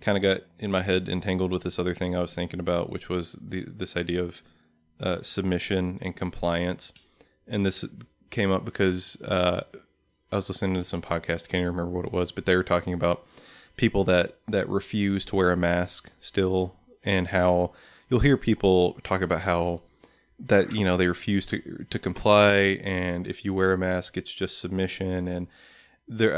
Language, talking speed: English, 190 wpm